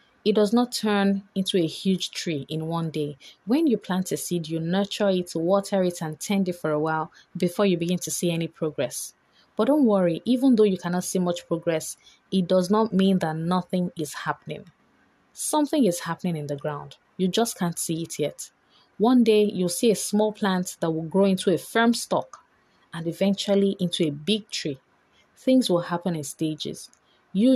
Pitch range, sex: 165-200 Hz, female